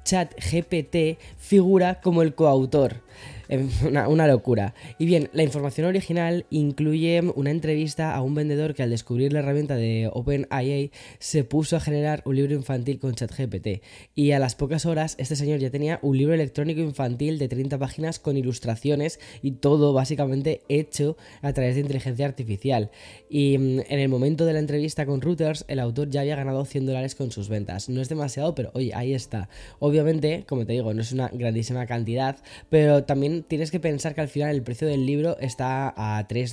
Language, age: Spanish, 10-29